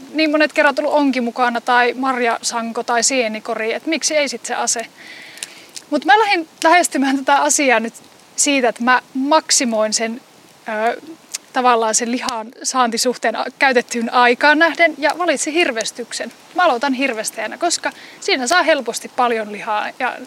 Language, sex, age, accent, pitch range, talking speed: Finnish, female, 30-49, native, 235-305 Hz, 145 wpm